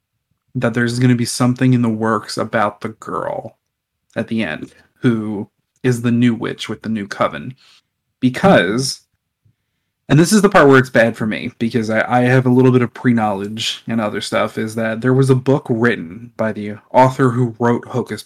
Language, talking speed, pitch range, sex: English, 195 wpm, 115-130 Hz, male